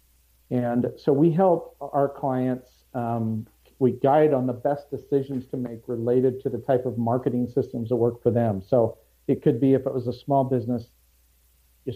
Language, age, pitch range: English, 50-69, 115-140 Hz